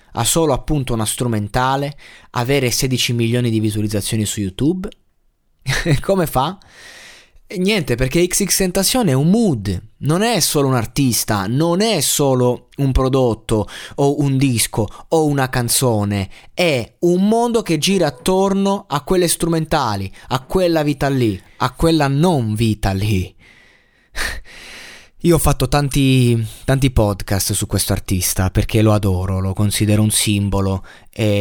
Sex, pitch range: male, 105-145 Hz